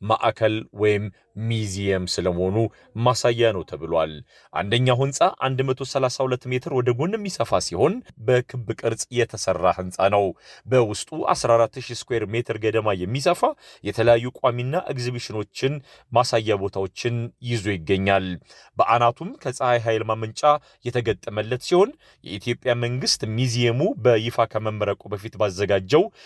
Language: Amharic